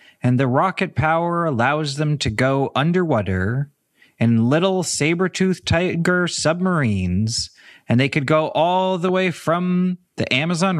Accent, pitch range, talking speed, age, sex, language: American, 105-155 Hz, 135 wpm, 30-49, male, English